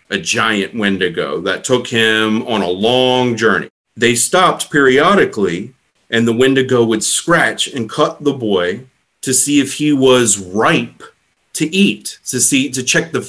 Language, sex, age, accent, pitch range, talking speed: English, male, 40-59, American, 125-155 Hz, 160 wpm